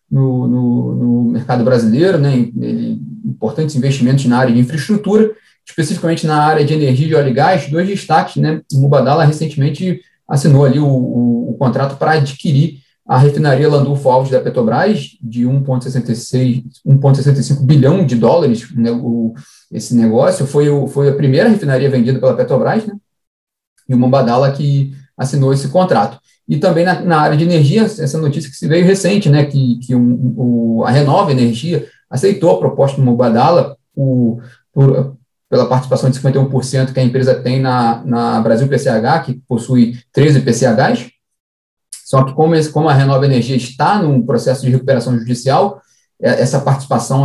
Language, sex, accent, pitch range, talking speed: Portuguese, male, Brazilian, 125-150 Hz, 165 wpm